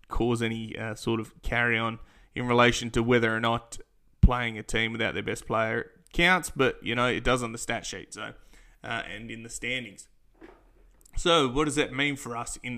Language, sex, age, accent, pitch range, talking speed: English, male, 20-39, Australian, 115-130 Hz, 200 wpm